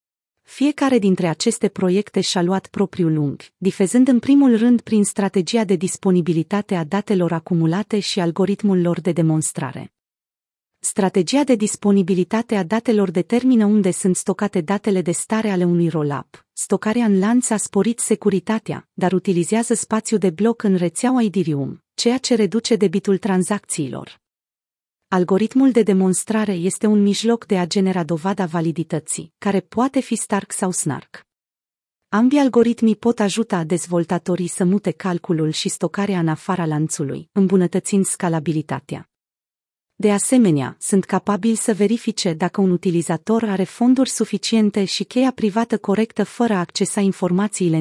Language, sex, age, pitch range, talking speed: Romanian, female, 30-49, 175-220 Hz, 140 wpm